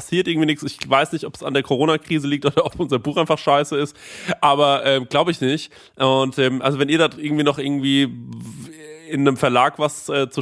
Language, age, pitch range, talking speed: German, 20-39, 135-155 Hz, 225 wpm